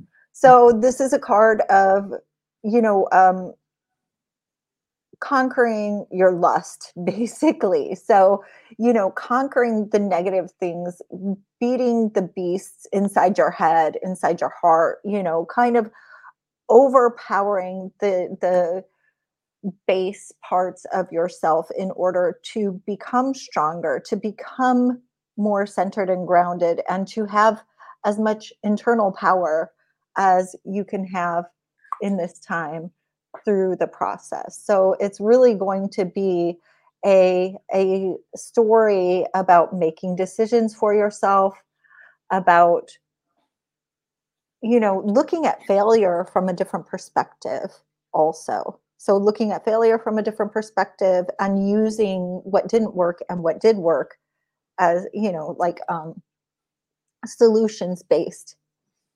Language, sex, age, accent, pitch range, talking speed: English, female, 30-49, American, 180-225 Hz, 120 wpm